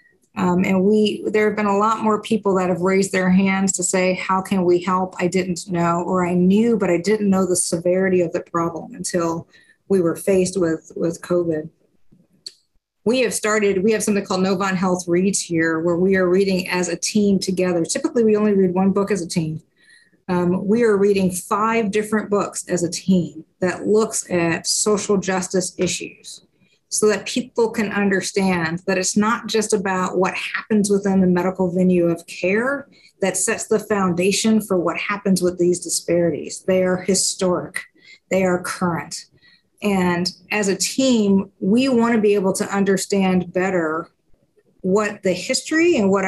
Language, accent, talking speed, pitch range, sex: English, American, 180 wpm, 180-210 Hz, female